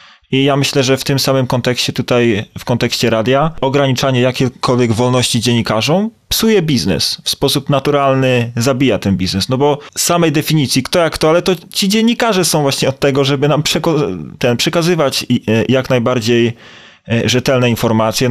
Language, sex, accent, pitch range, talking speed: Polish, male, native, 105-135 Hz, 160 wpm